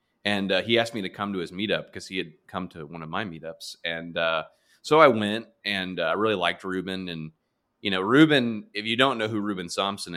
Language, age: English, 30-49